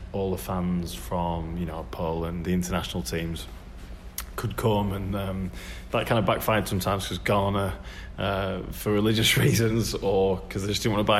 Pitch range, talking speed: 85-100 Hz, 175 wpm